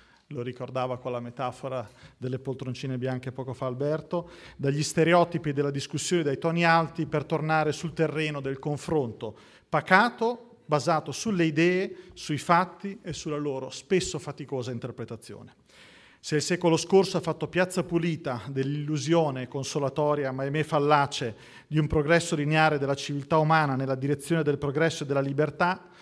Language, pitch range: Italian, 135-165 Hz